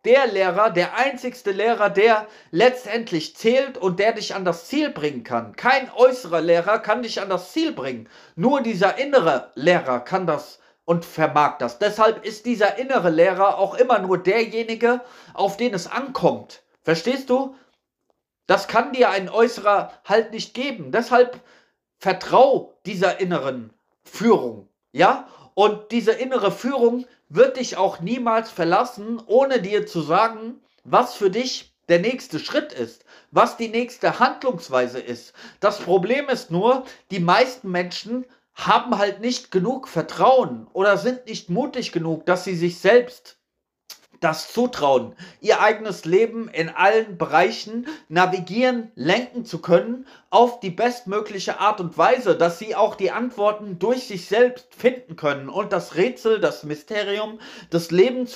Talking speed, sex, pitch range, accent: 150 wpm, male, 180-245 Hz, German